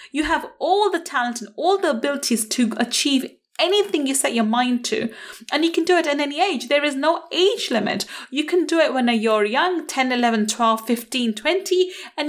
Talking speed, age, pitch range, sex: 210 wpm, 30-49, 235-330 Hz, female